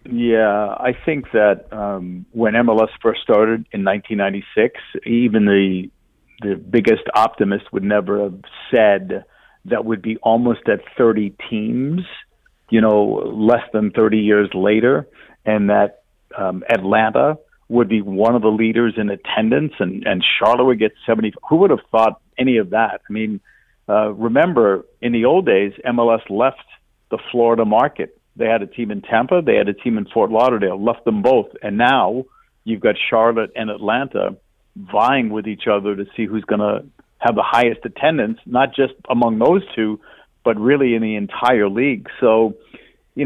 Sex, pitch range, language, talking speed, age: male, 105-120 Hz, English, 170 wpm, 50-69